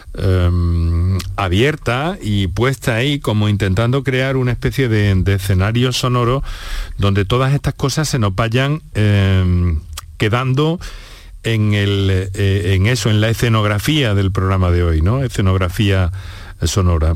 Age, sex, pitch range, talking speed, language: 40-59, male, 95-125 Hz, 135 wpm, Spanish